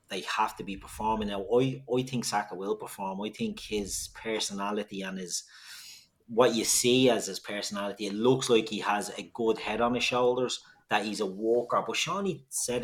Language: English